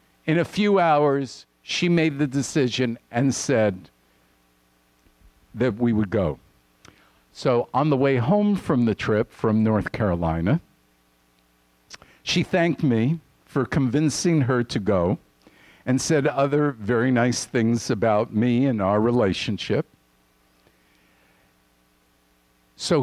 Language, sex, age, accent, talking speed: English, male, 50-69, American, 115 wpm